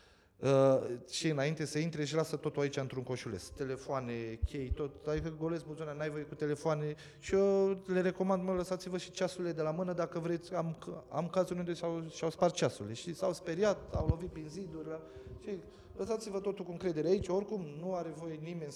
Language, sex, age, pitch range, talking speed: Romanian, male, 30-49, 130-180 Hz, 190 wpm